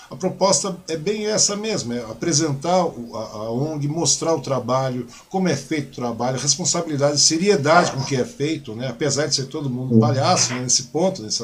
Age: 50-69